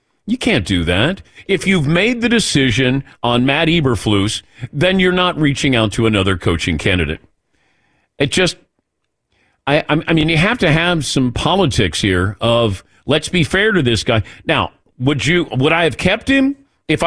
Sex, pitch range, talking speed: male, 120-170 Hz, 170 wpm